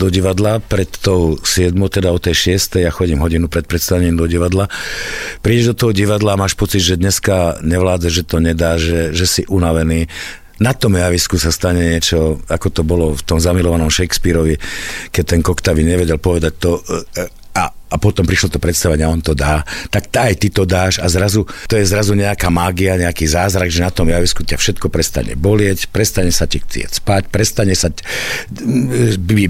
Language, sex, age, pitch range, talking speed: Slovak, male, 50-69, 85-105 Hz, 190 wpm